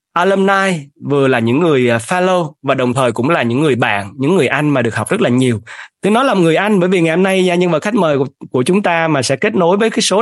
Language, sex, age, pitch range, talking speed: Vietnamese, male, 20-39, 125-170 Hz, 275 wpm